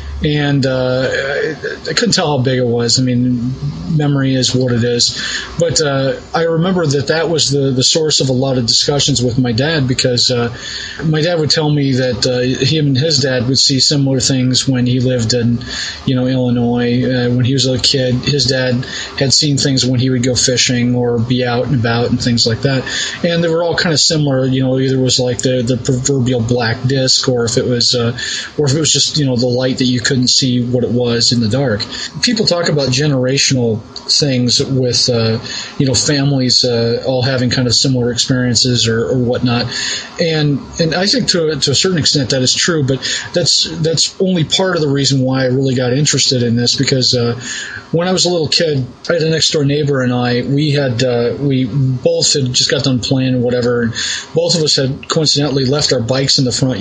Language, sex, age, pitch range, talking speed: English, male, 30-49, 125-150 Hz, 225 wpm